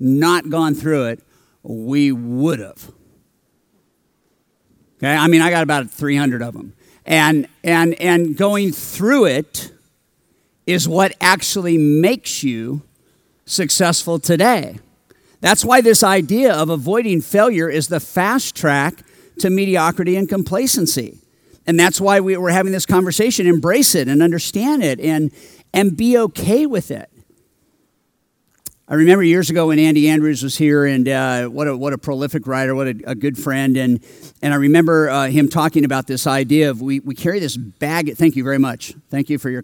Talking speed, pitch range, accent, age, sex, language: 160 wpm, 140-180 Hz, American, 50-69, male, English